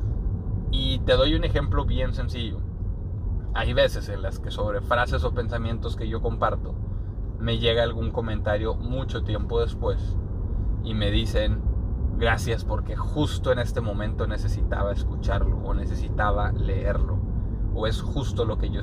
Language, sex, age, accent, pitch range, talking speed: Spanish, male, 20-39, Mexican, 95-110 Hz, 145 wpm